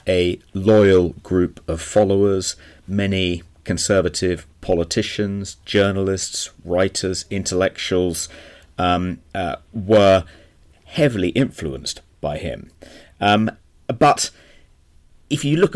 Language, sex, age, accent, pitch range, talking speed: English, male, 30-49, British, 85-110 Hz, 90 wpm